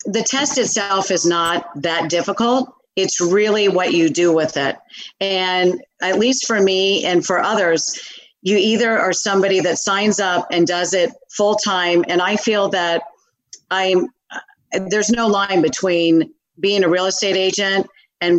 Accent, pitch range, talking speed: American, 170-205 Hz, 155 wpm